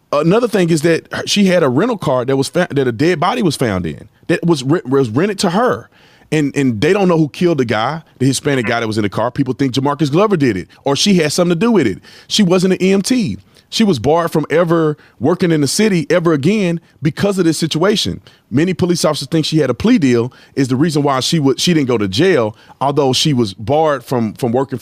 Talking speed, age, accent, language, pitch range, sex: 245 wpm, 30-49, American, English, 140-185 Hz, male